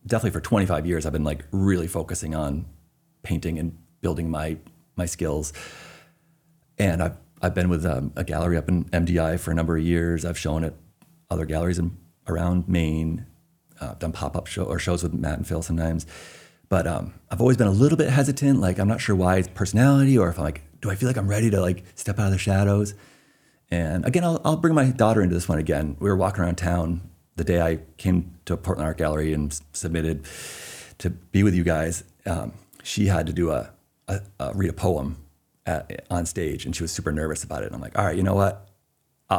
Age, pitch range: 40-59, 80-100 Hz